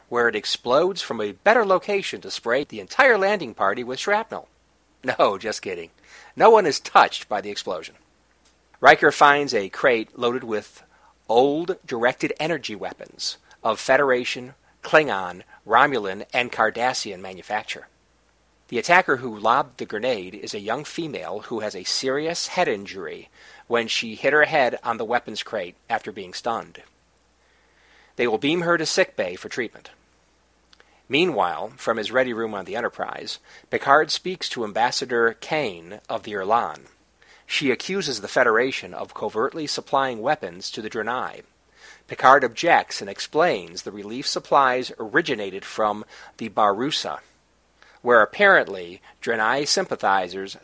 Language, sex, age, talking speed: English, male, 40-59, 140 wpm